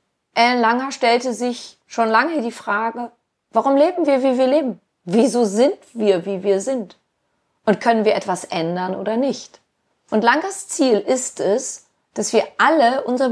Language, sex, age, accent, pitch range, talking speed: German, female, 30-49, German, 200-250 Hz, 160 wpm